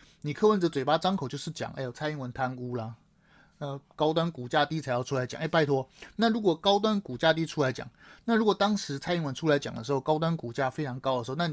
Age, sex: 30-49, male